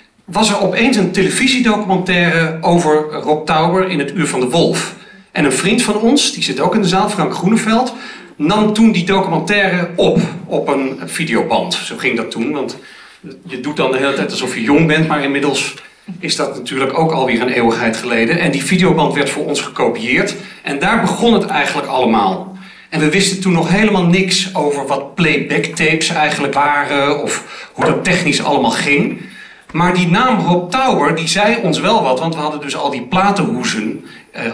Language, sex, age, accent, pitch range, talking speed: Dutch, male, 40-59, Dutch, 150-200 Hz, 190 wpm